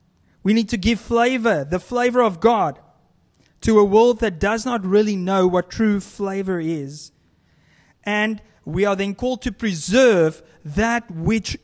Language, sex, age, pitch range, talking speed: English, male, 30-49, 175-230 Hz, 155 wpm